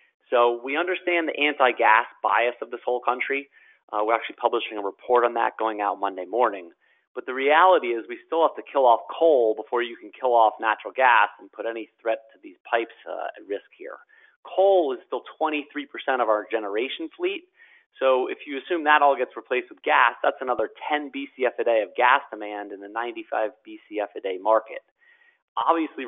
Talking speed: 200 wpm